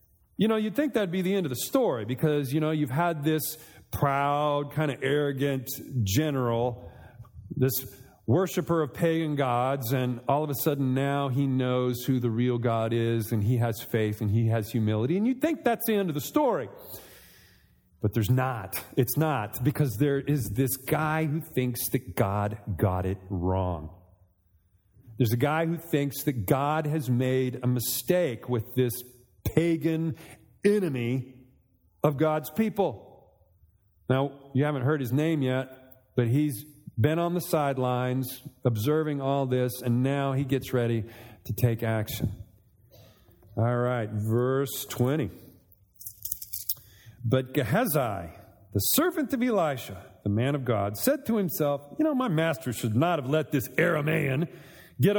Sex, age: male, 40-59